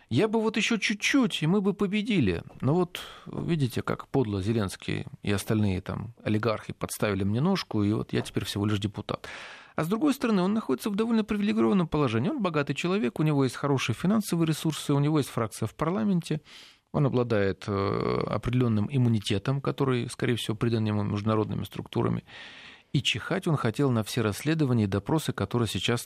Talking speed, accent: 175 wpm, native